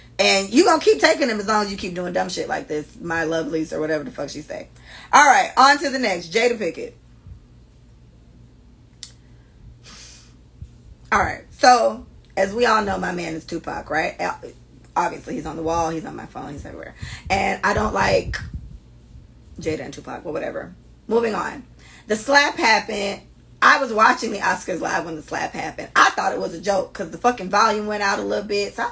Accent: American